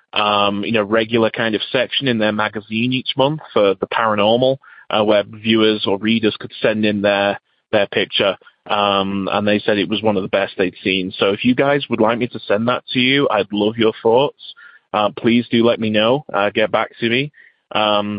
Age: 20-39